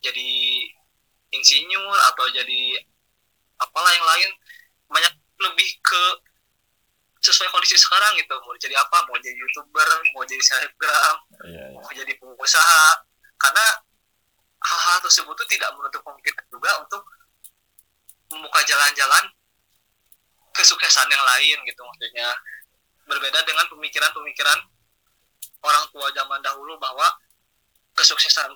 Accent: native